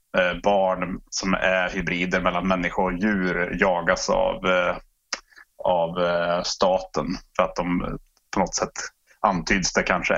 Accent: Norwegian